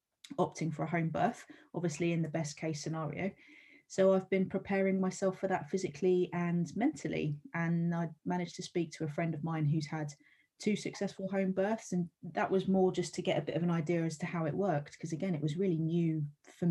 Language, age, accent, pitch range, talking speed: English, 30-49, British, 165-190 Hz, 220 wpm